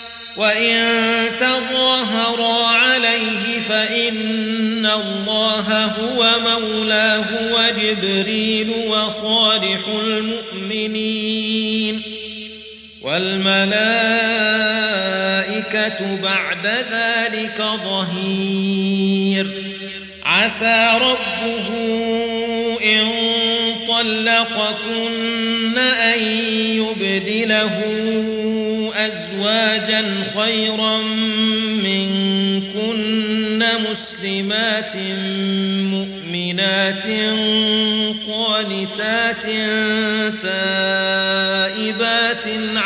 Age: 40-59